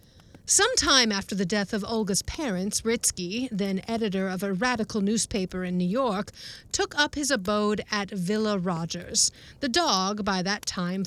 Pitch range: 205-290 Hz